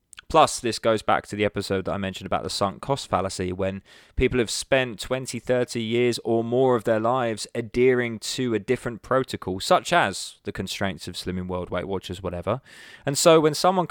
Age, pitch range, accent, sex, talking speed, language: 20-39, 100-125 Hz, British, male, 200 wpm, English